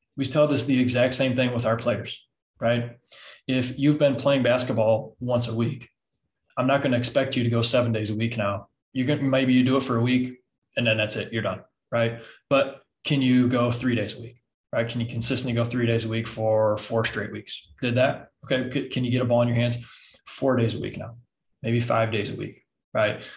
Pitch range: 115-125 Hz